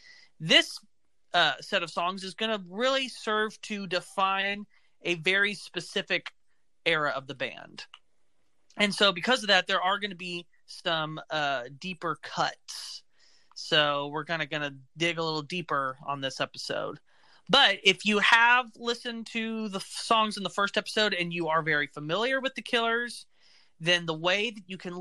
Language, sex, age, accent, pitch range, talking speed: English, male, 30-49, American, 160-205 Hz, 170 wpm